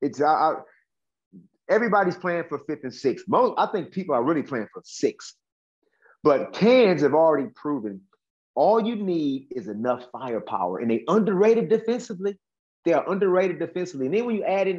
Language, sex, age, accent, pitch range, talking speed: English, male, 30-49, American, 130-195 Hz, 175 wpm